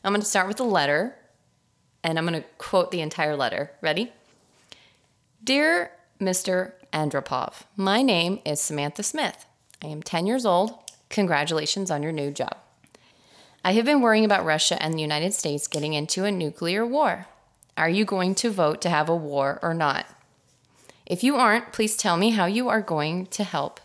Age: 30-49